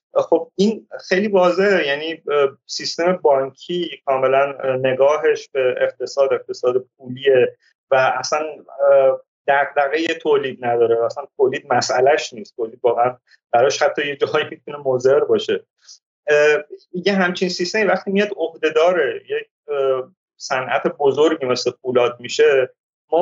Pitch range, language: 140-195 Hz, Persian